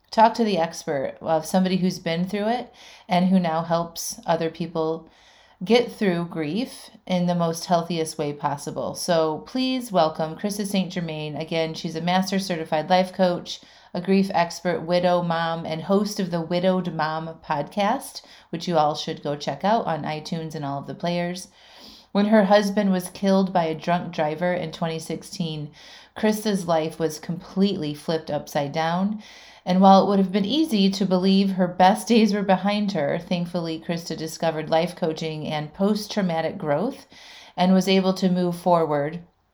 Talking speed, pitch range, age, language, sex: 170 wpm, 165-210 Hz, 30-49, English, female